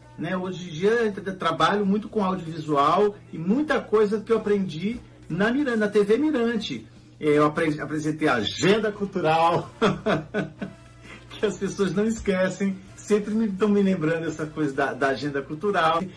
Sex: male